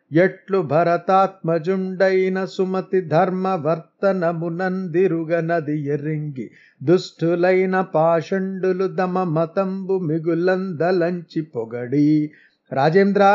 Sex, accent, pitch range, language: male, native, 160-190 Hz, Telugu